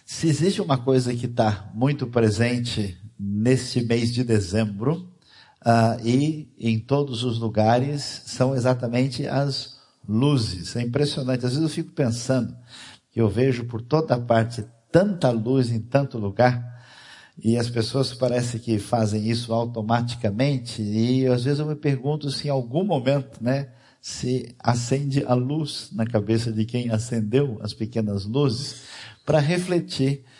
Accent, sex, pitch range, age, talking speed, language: Brazilian, male, 115-135 Hz, 50-69, 140 wpm, Portuguese